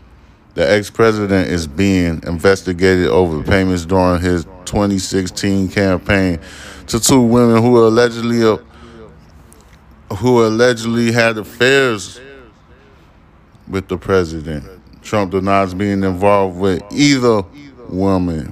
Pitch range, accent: 90-105 Hz, American